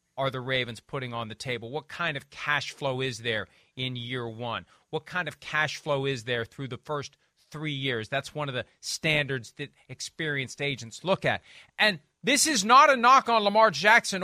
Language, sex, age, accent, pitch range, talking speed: English, male, 40-59, American, 155-245 Hz, 200 wpm